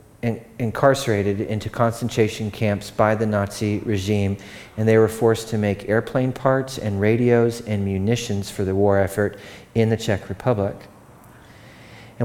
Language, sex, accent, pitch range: English, male, American, 110-135 Hz